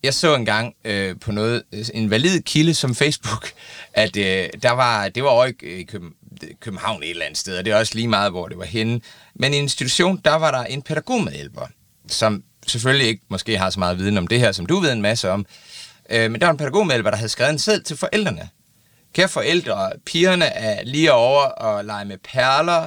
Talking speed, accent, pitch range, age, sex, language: 215 wpm, native, 105-145 Hz, 30-49, male, Danish